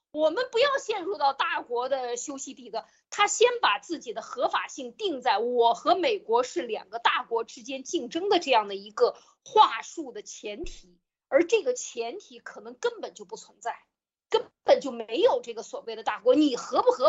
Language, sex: Chinese, female